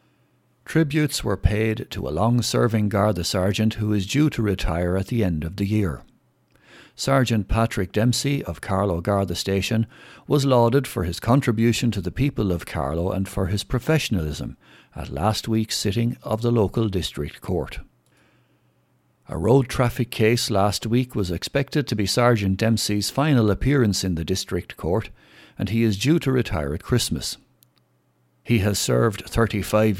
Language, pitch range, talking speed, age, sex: English, 90-120 Hz, 160 wpm, 60-79, male